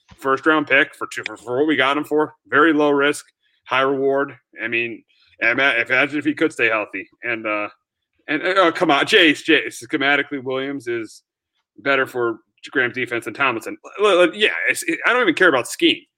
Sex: male